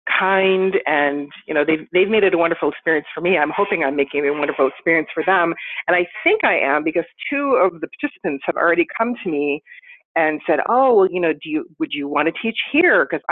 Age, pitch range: 40-59, 160-245 Hz